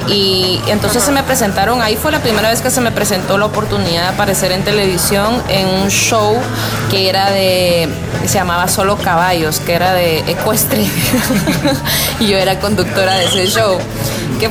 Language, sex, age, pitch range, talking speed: Spanish, female, 20-39, 175-205 Hz, 175 wpm